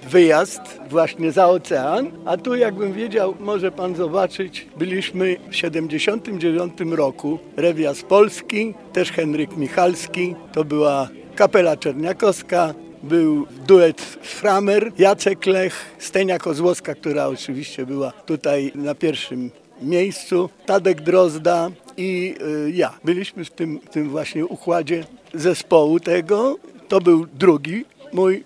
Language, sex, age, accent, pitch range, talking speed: Polish, male, 50-69, native, 155-190 Hz, 115 wpm